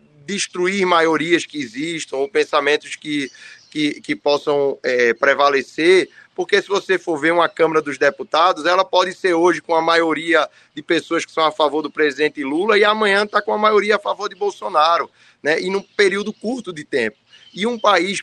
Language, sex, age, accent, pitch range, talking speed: Portuguese, male, 20-39, Brazilian, 150-210 Hz, 190 wpm